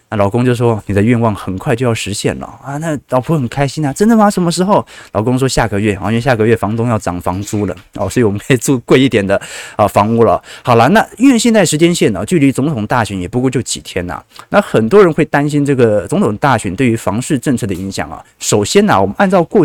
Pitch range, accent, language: 105-150 Hz, native, Chinese